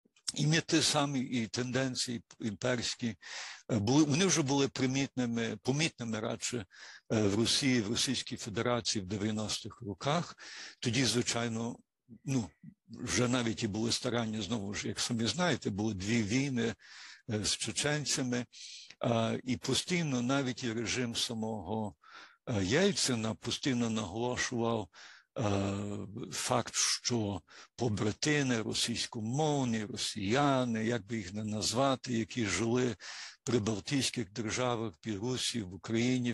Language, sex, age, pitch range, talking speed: Ukrainian, male, 60-79, 110-130 Hz, 110 wpm